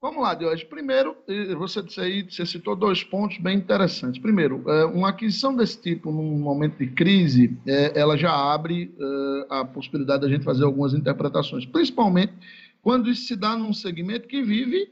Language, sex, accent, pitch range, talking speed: Portuguese, male, Brazilian, 140-200 Hz, 165 wpm